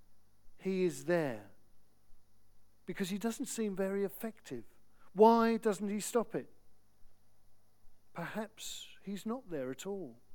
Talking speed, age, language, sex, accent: 115 wpm, 50-69, English, male, British